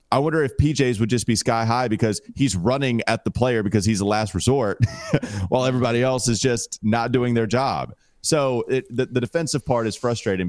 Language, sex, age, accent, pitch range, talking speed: English, male, 30-49, American, 100-130 Hz, 210 wpm